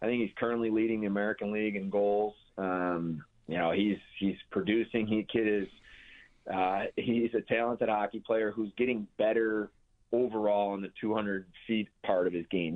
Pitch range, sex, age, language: 95-110 Hz, male, 30-49, English